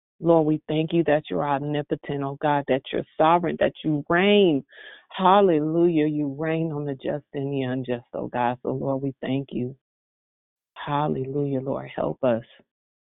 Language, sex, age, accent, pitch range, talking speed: English, female, 40-59, American, 135-155 Hz, 160 wpm